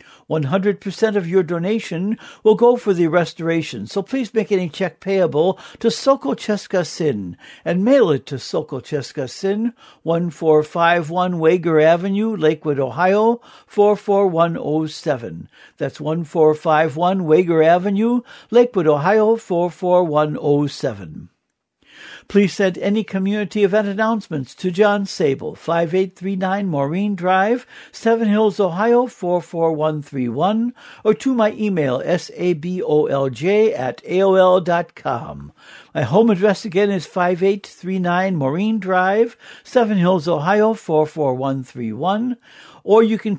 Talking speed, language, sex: 105 wpm, English, male